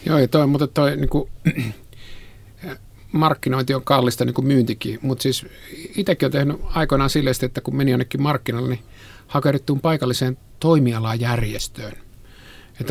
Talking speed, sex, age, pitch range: 145 wpm, male, 50-69, 120-150 Hz